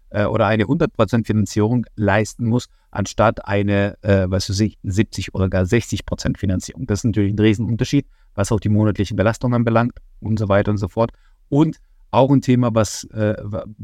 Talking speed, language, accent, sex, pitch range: 165 wpm, German, German, male, 100-115 Hz